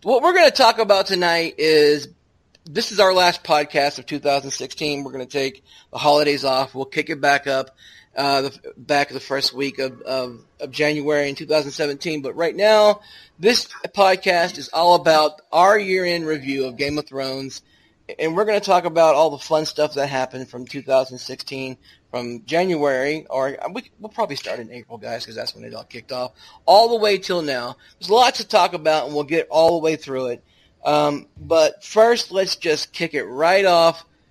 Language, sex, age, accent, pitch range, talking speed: English, male, 30-49, American, 140-180 Hz, 200 wpm